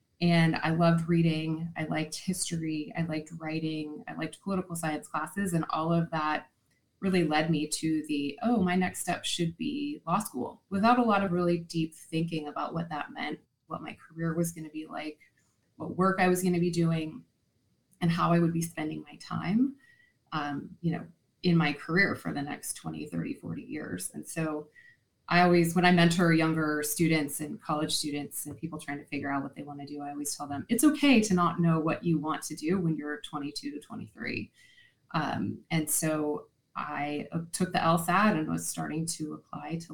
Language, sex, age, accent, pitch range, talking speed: English, female, 20-39, American, 150-175 Hz, 205 wpm